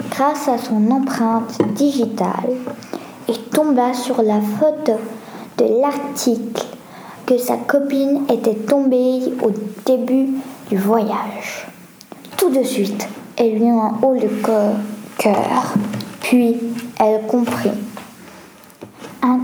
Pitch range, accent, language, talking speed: 220-270 Hz, French, French, 105 wpm